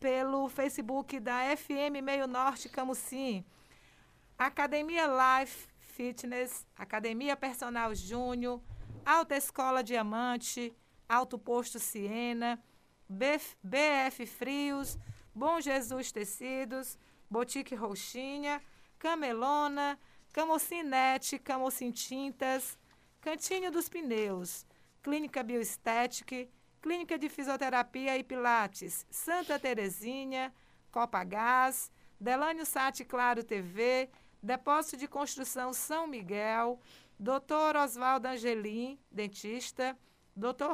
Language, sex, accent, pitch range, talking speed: Portuguese, female, Brazilian, 240-280 Hz, 85 wpm